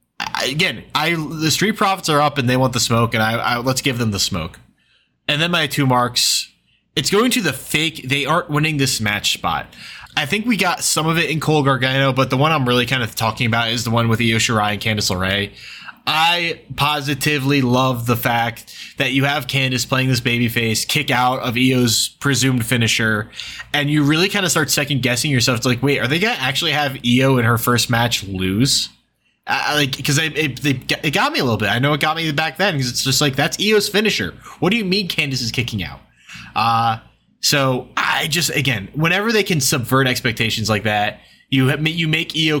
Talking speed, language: 220 wpm, English